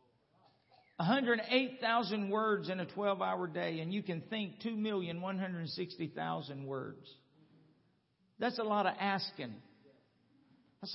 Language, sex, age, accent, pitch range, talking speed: English, male, 50-69, American, 185-245 Hz, 100 wpm